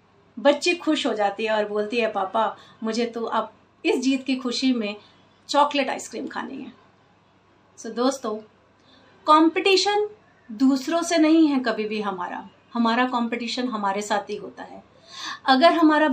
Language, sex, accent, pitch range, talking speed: Hindi, female, native, 220-275 Hz, 155 wpm